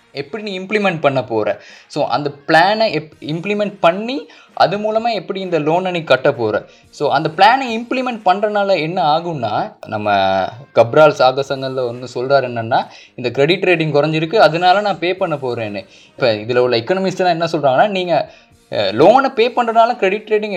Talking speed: 155 wpm